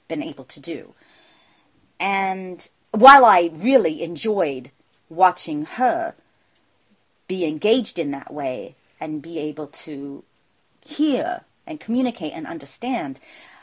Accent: American